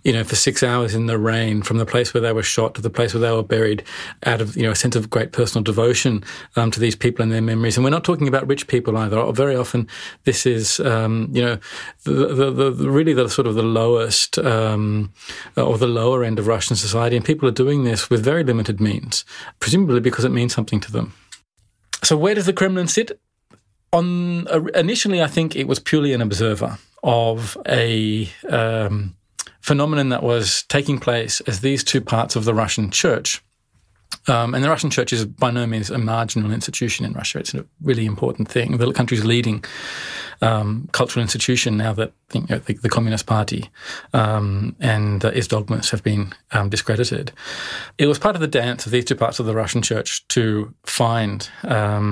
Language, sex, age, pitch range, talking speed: English, male, 30-49, 110-130 Hz, 205 wpm